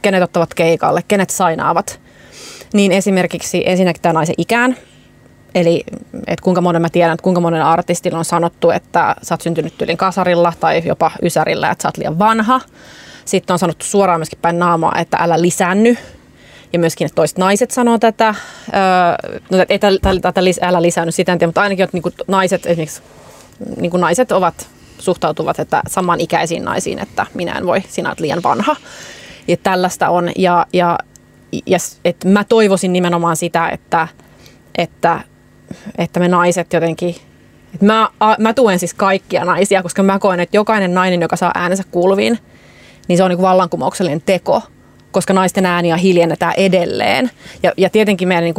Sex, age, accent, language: female, 30-49, native, Finnish